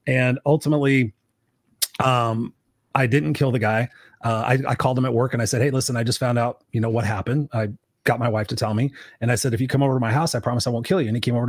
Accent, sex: American, male